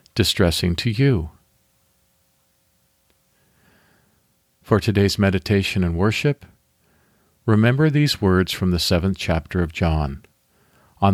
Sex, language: male, English